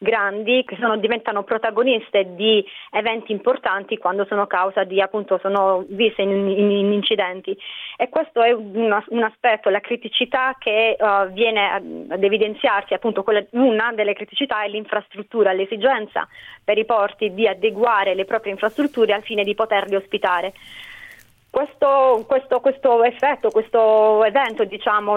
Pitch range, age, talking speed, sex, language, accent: 200-240 Hz, 30-49, 140 wpm, female, Italian, native